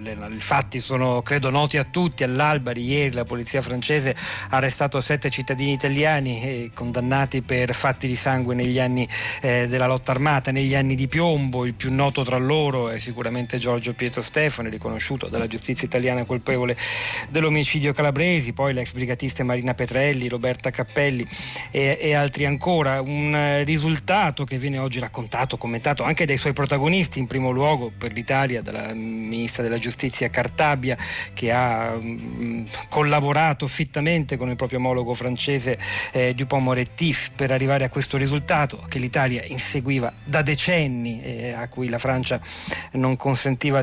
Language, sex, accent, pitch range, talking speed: Italian, male, native, 120-145 Hz, 155 wpm